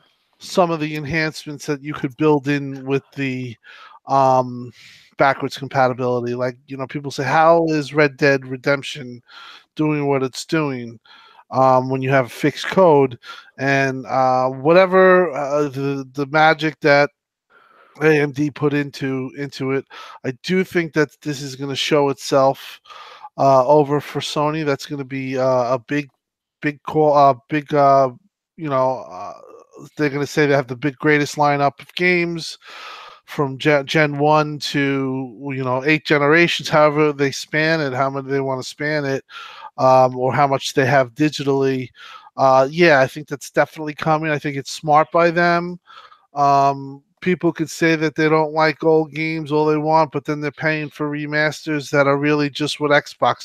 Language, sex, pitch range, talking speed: English, male, 135-155 Hz, 170 wpm